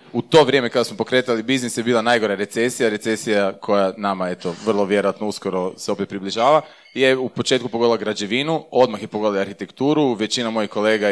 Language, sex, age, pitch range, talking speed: Croatian, male, 30-49, 105-135 Hz, 185 wpm